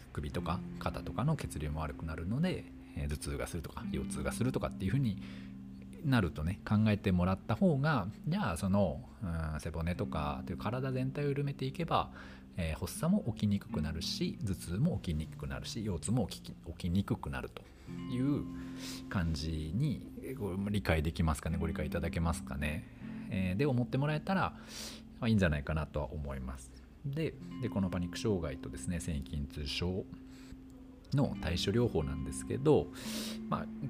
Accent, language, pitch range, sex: native, Japanese, 75-115 Hz, male